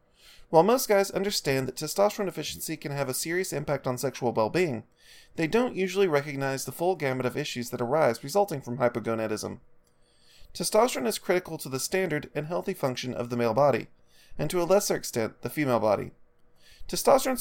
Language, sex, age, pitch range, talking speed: English, male, 30-49, 125-190 Hz, 175 wpm